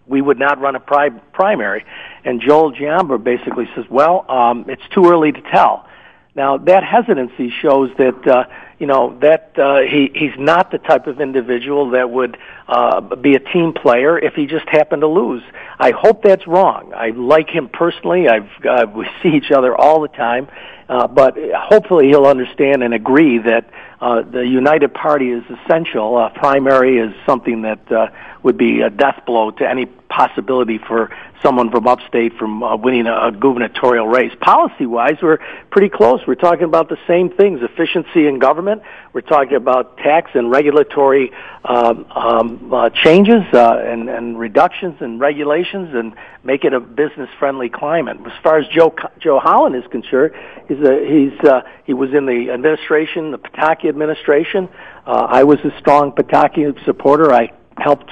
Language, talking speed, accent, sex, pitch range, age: English, 175 wpm, American, male, 125-155 Hz, 50-69